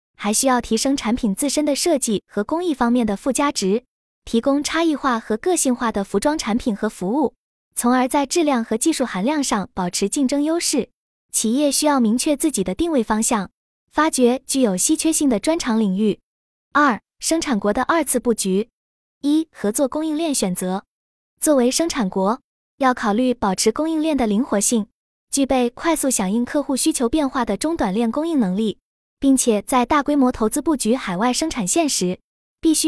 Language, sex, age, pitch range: Chinese, female, 20-39, 220-290 Hz